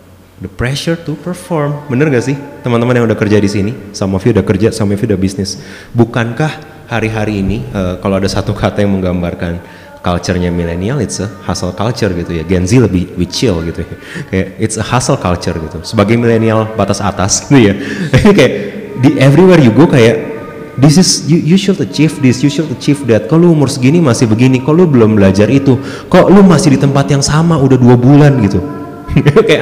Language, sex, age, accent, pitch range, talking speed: Indonesian, male, 30-49, native, 100-135 Hz, 205 wpm